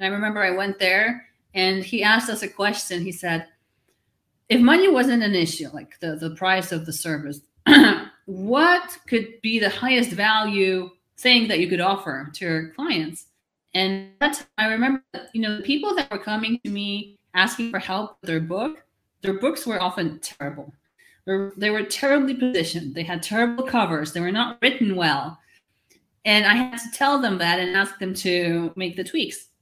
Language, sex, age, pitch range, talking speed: English, female, 30-49, 175-225 Hz, 190 wpm